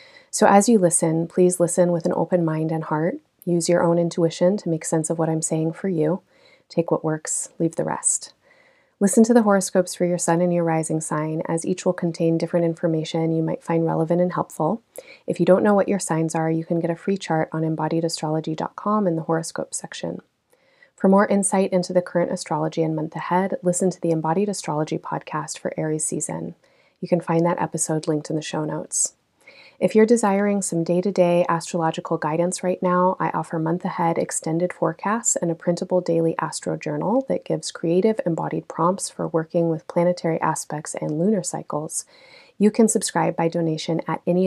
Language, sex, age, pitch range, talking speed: English, female, 30-49, 165-185 Hz, 195 wpm